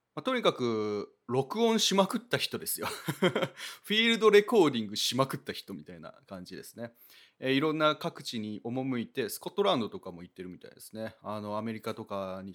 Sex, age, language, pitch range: male, 30-49, Japanese, 110-160 Hz